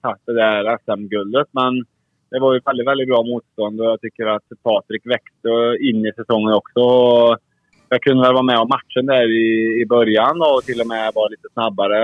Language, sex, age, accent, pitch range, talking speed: Swedish, male, 20-39, Norwegian, 110-135 Hz, 195 wpm